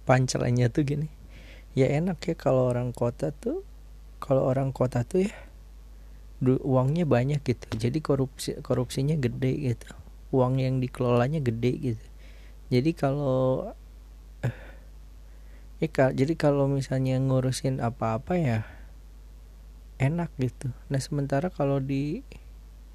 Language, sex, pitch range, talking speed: Indonesian, male, 105-135 Hz, 110 wpm